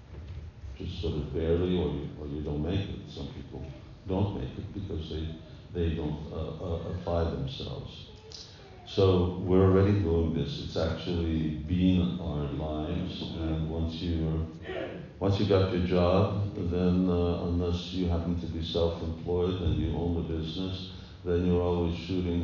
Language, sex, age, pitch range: English, male, 50-69, 80-95 Hz